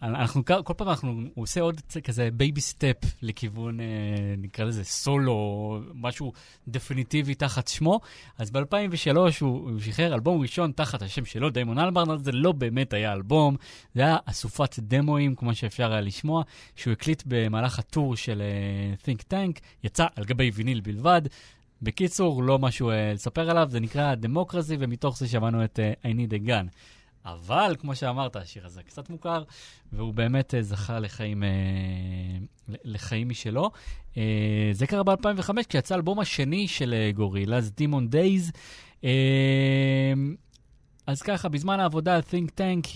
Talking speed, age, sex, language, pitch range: 150 wpm, 30-49, male, Hebrew, 110-155 Hz